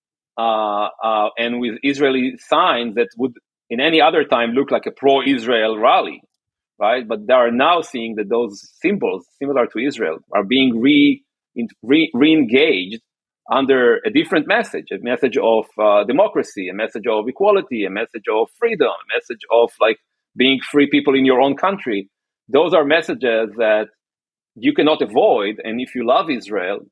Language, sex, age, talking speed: English, male, 40-59, 160 wpm